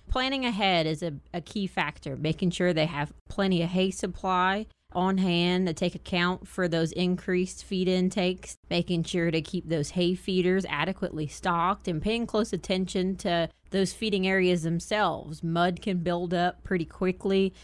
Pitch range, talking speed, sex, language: 165-190 Hz, 165 wpm, female, English